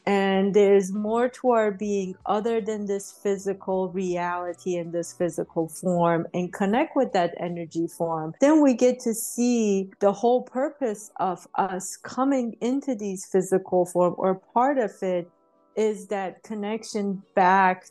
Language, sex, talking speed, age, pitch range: English, female, 145 wpm, 30-49, 180-225 Hz